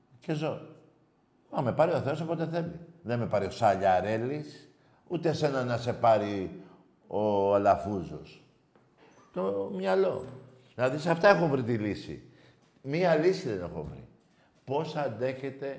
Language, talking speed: Greek, 140 wpm